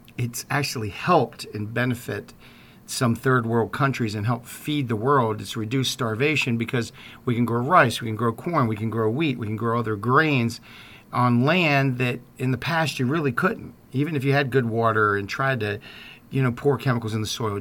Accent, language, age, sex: American, English, 50-69, male